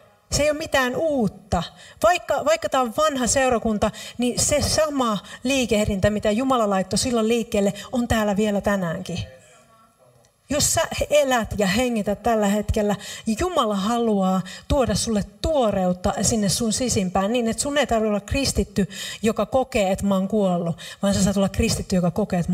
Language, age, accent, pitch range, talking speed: Finnish, 40-59, native, 190-240 Hz, 160 wpm